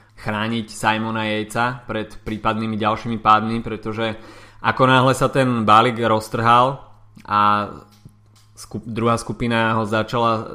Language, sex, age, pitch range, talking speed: Slovak, male, 20-39, 110-125 Hz, 110 wpm